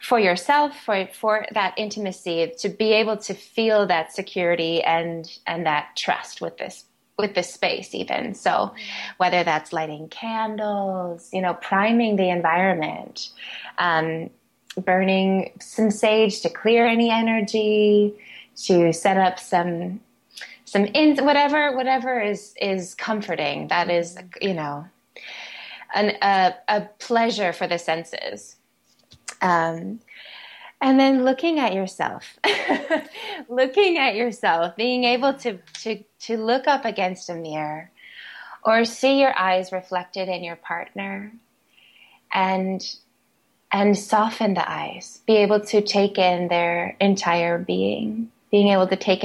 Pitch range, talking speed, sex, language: 180-225 Hz, 130 wpm, female, English